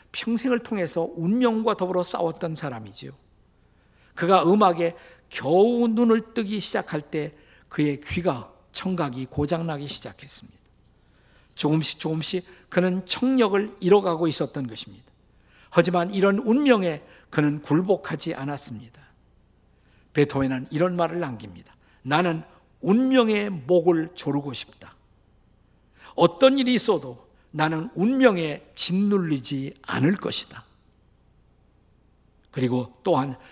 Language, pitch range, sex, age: Korean, 145-205 Hz, male, 50-69